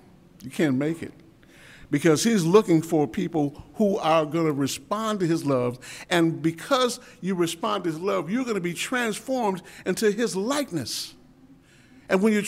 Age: 50-69